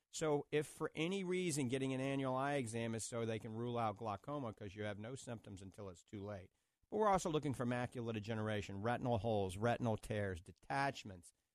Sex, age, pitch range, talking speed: male, 50-69, 105-140 Hz, 195 wpm